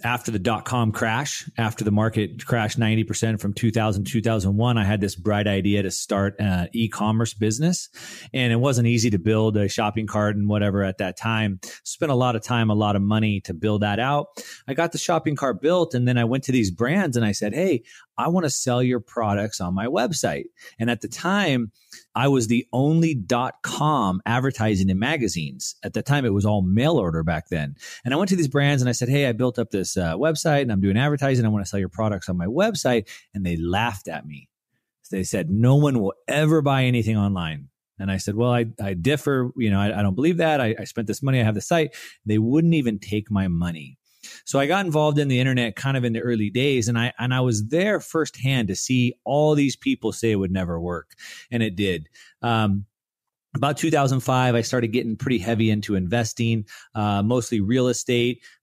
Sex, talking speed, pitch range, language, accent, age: male, 225 wpm, 105-130 Hz, English, American, 30-49